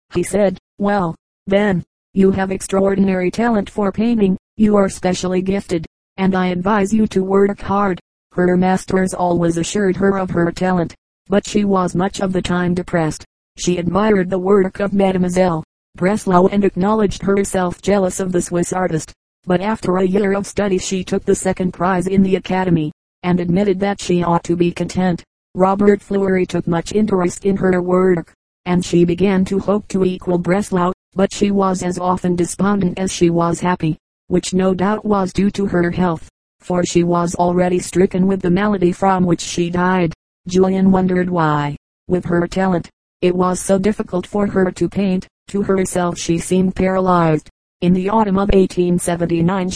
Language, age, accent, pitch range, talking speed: English, 50-69, American, 175-195 Hz, 175 wpm